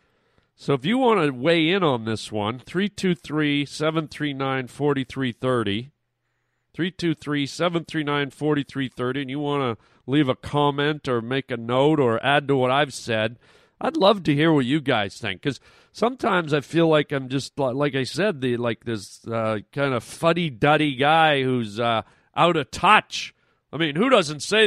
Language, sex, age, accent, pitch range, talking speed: English, male, 40-59, American, 130-175 Hz, 160 wpm